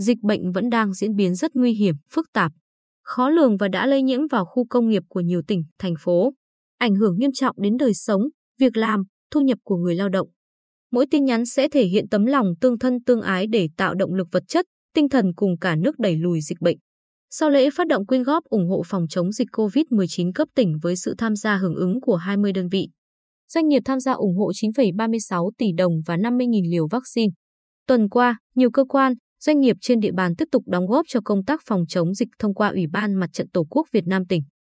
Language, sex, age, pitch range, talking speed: Vietnamese, female, 20-39, 185-255 Hz, 235 wpm